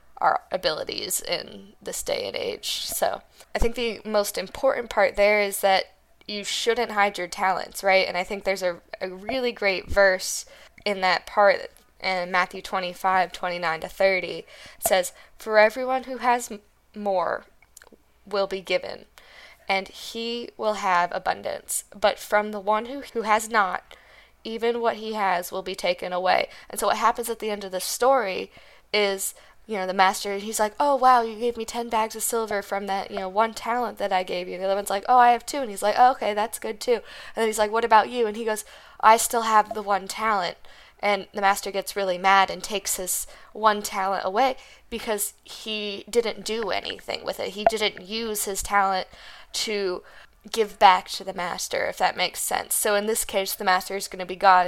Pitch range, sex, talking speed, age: 190-225 Hz, female, 200 wpm, 10-29